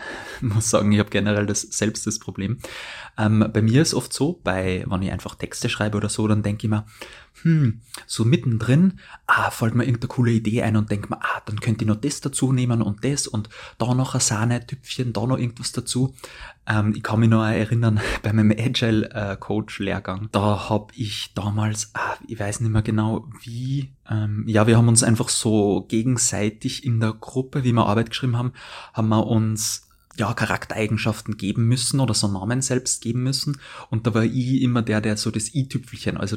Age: 20-39